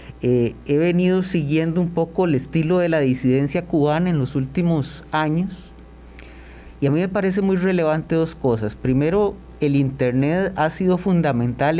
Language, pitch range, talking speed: Spanish, 125-175 Hz, 160 wpm